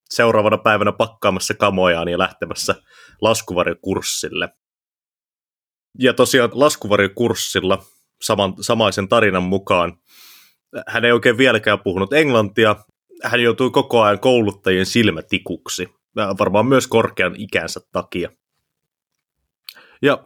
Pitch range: 100-120 Hz